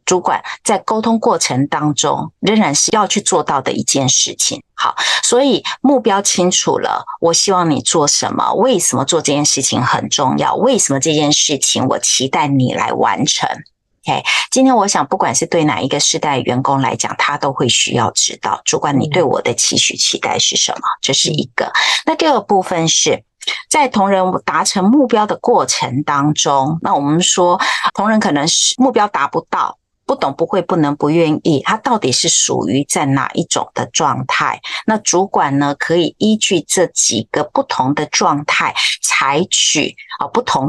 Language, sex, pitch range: Chinese, female, 145-205 Hz